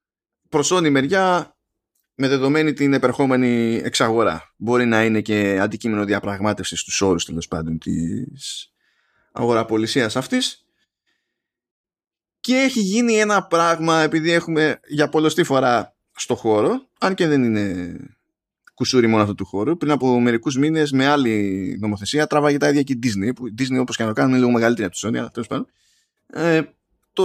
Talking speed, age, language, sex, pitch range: 155 wpm, 20-39, Greek, male, 115-165 Hz